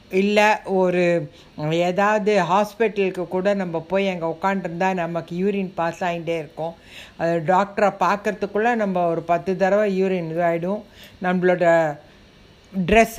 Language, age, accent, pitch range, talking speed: Tamil, 60-79, native, 170-210 Hz, 120 wpm